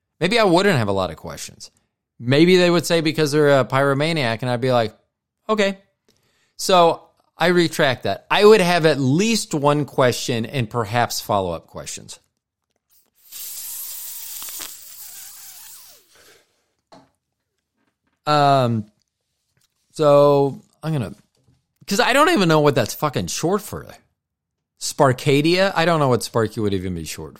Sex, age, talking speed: male, 40-59, 135 wpm